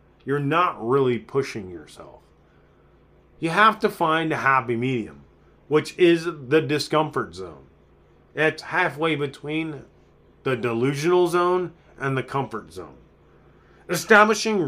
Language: English